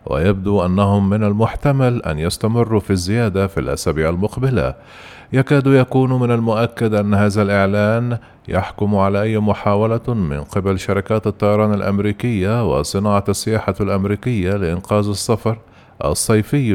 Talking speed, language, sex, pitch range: 120 wpm, Arabic, male, 95-120 Hz